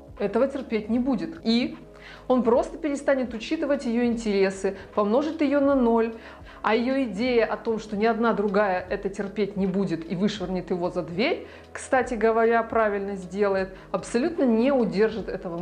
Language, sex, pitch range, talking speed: Russian, female, 205-255 Hz, 160 wpm